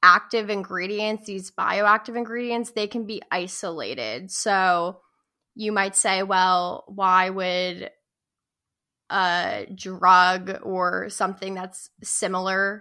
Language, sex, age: English, female, 10-29